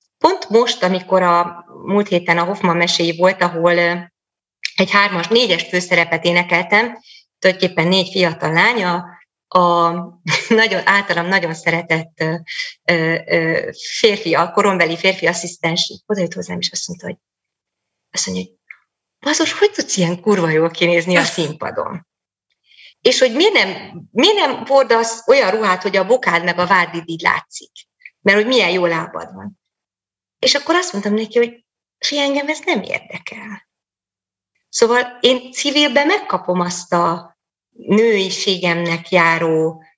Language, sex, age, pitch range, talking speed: Hungarian, female, 30-49, 170-220 Hz, 135 wpm